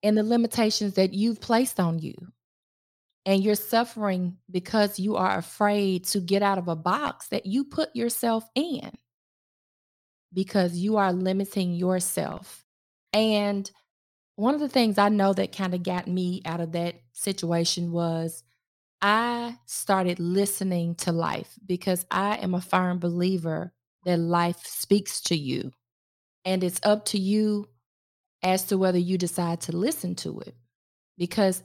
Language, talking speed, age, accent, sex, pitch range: English, 150 wpm, 20-39, American, female, 175-210 Hz